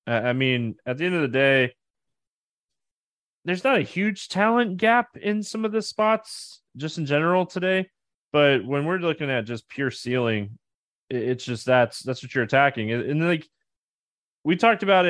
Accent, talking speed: American, 170 wpm